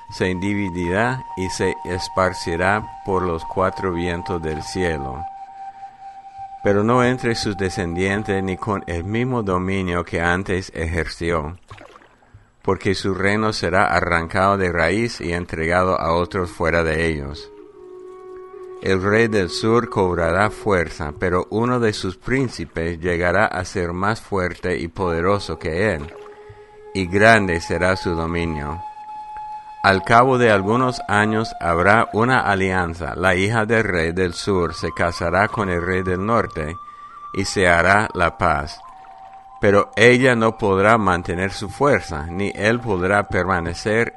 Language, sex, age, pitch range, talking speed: English, male, 60-79, 85-115 Hz, 135 wpm